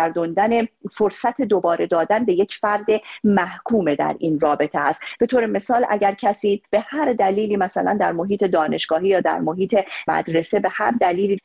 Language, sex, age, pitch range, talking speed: Persian, female, 40-59, 170-210 Hz, 155 wpm